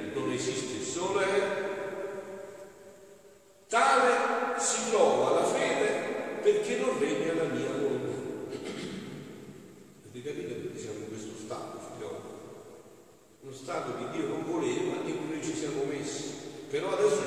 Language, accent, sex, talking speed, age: Italian, native, male, 125 wpm, 50-69